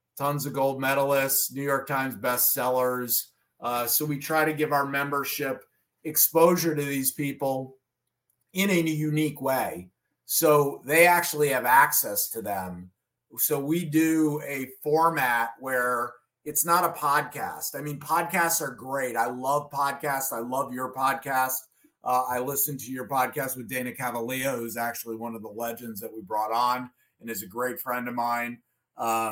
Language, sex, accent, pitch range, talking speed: English, male, American, 125-155 Hz, 160 wpm